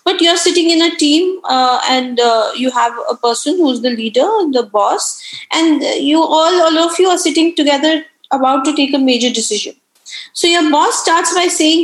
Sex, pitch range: female, 270-350 Hz